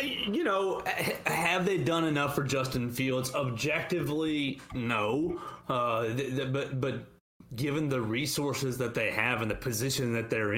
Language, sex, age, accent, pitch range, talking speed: English, male, 30-49, American, 120-140 Hz, 155 wpm